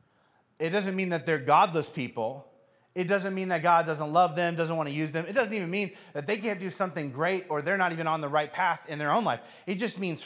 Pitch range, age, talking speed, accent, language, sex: 140-185 Hz, 30-49, 255 wpm, American, English, male